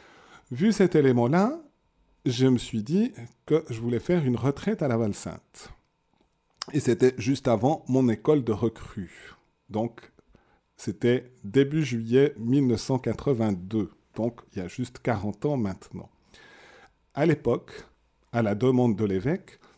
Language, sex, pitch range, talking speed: French, male, 115-150 Hz, 135 wpm